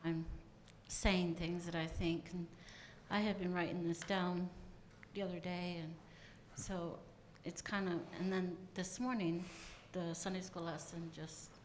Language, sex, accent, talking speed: English, female, American, 155 wpm